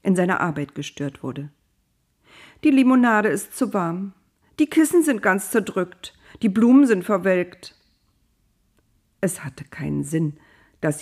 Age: 50-69